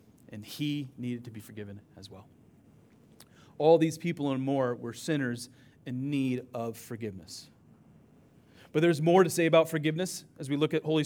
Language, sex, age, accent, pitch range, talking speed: English, male, 30-49, American, 120-160 Hz, 170 wpm